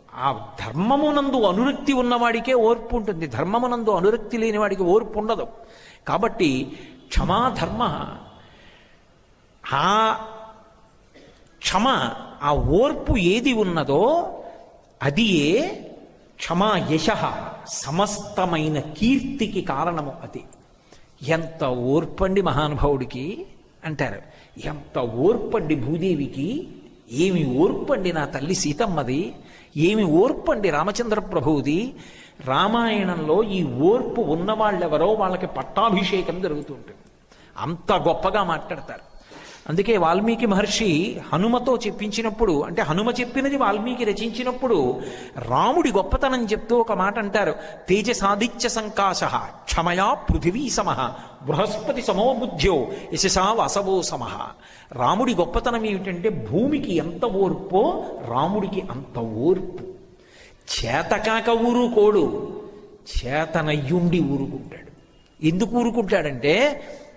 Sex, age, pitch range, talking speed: male, 50-69, 160-230 Hz, 85 wpm